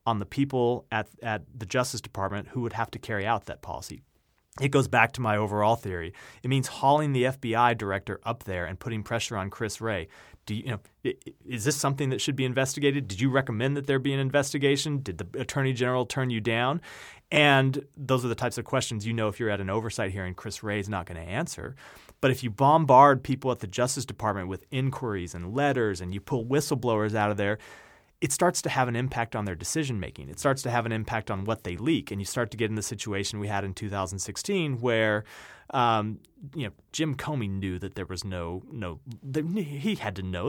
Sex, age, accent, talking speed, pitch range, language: male, 30-49, American, 230 wpm, 105-135 Hz, English